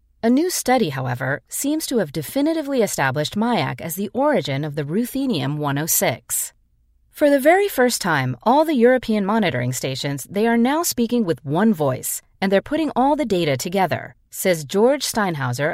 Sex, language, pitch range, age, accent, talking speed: female, English, 150-250 Hz, 30-49, American, 165 wpm